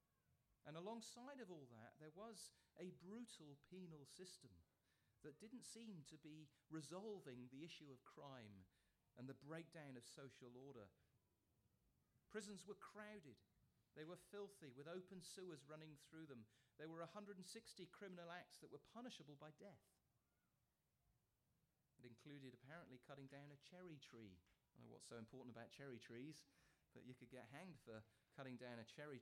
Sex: male